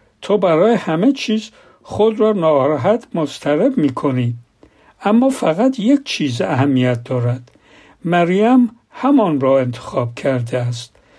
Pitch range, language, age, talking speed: 135-200 Hz, Persian, 60-79, 115 wpm